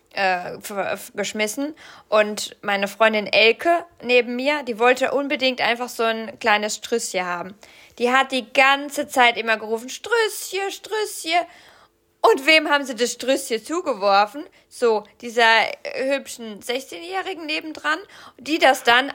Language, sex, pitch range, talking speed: German, female, 215-280 Hz, 140 wpm